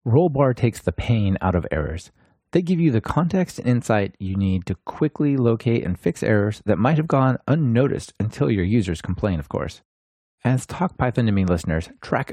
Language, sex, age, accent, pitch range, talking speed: English, male, 30-49, American, 95-130 Hz, 190 wpm